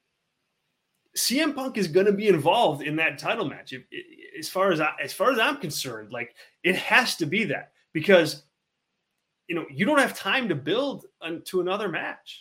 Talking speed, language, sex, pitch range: 185 wpm, English, male, 140-195 Hz